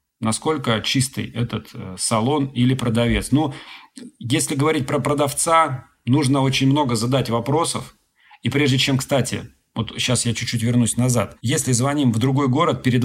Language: Russian